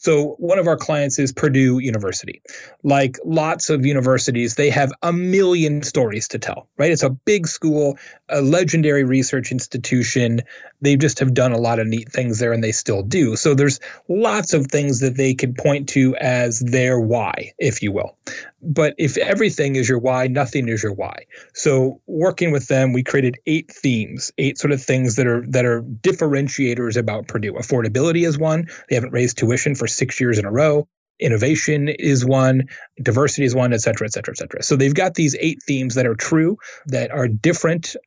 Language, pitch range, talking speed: English, 125-155 Hz, 195 wpm